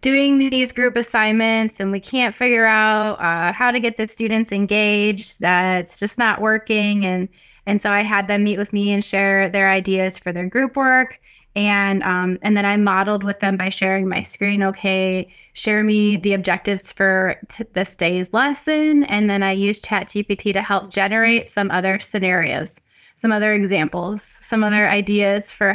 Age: 20-39